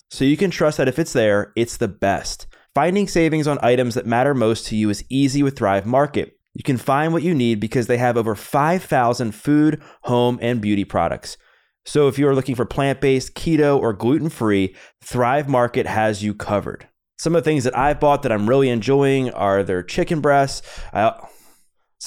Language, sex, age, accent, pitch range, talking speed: English, male, 20-39, American, 115-150 Hz, 195 wpm